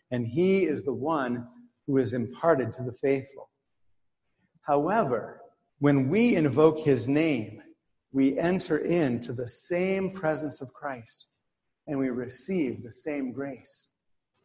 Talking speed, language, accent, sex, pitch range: 130 wpm, English, American, male, 125-170 Hz